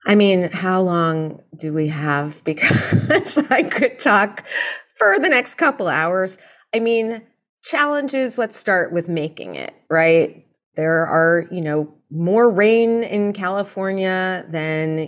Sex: female